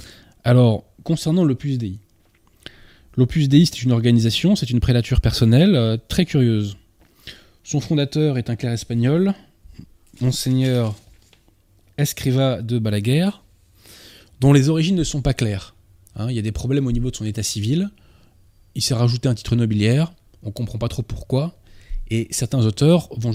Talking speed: 155 wpm